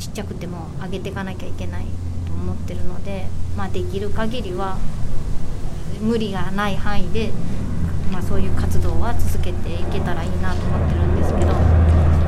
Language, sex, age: Japanese, female, 30-49